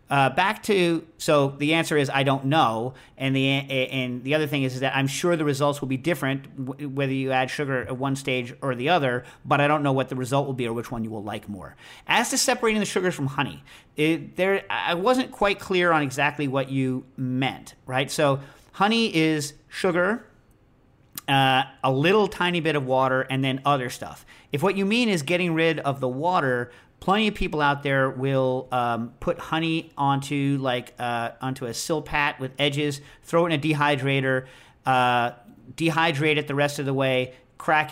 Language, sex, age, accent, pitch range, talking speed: English, male, 40-59, American, 130-150 Hz, 205 wpm